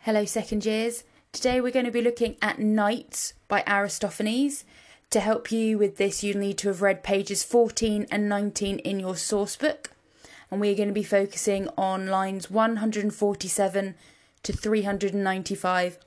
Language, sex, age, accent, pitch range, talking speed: English, female, 20-39, British, 185-220 Hz, 155 wpm